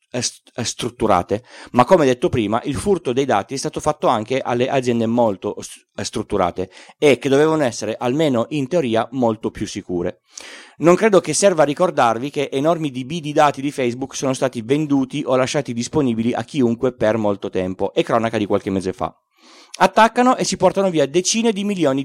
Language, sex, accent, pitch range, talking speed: Italian, male, native, 120-175 Hz, 175 wpm